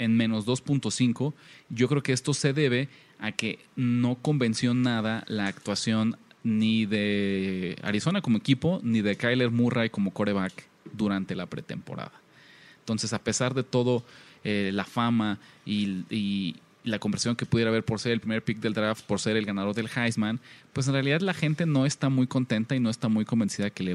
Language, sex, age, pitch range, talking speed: Spanish, male, 30-49, 110-135 Hz, 190 wpm